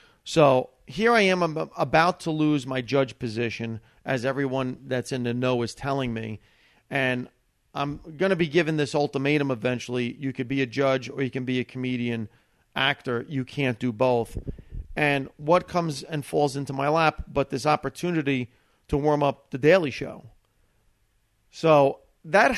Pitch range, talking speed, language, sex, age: 125-155 Hz, 170 wpm, English, male, 40-59